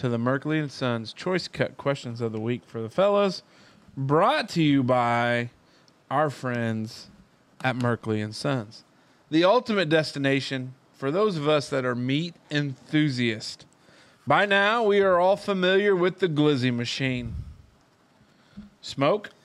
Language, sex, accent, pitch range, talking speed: English, male, American, 125-175 Hz, 135 wpm